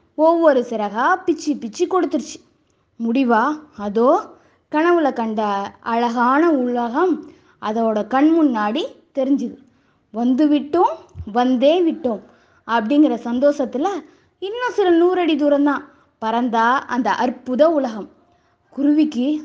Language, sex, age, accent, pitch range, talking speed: Tamil, female, 20-39, native, 245-335 Hz, 90 wpm